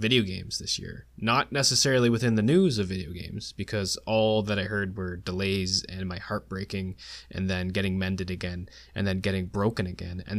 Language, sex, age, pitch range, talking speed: English, male, 20-39, 90-110 Hz, 190 wpm